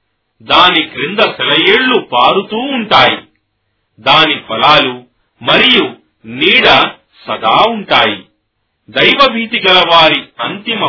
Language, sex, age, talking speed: Telugu, male, 40-59, 85 wpm